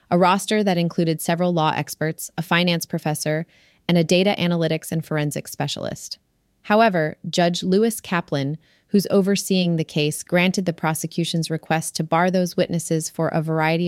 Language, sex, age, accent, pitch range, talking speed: English, female, 30-49, American, 155-185 Hz, 155 wpm